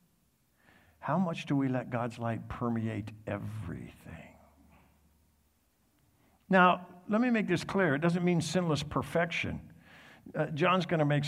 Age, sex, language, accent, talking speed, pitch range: 60-79, male, English, American, 135 wpm, 105-155 Hz